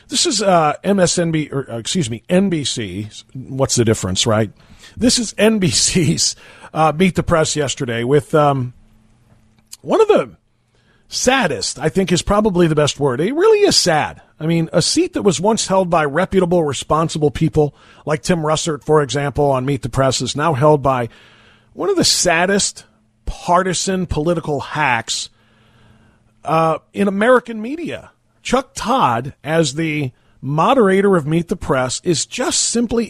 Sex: male